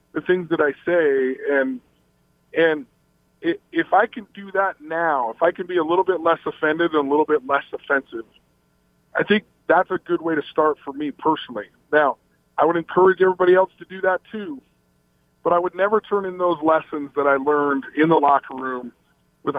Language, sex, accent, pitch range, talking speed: English, male, American, 140-190 Hz, 200 wpm